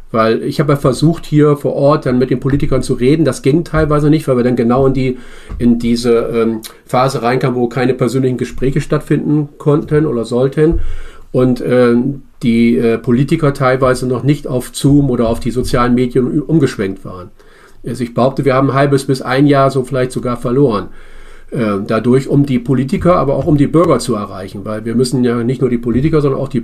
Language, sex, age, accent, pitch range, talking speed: German, male, 40-59, German, 115-135 Hz, 195 wpm